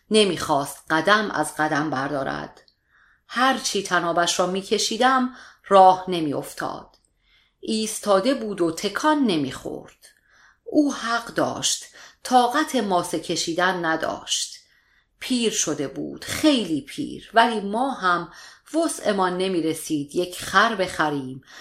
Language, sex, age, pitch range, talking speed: Persian, female, 40-59, 165-230 Hz, 100 wpm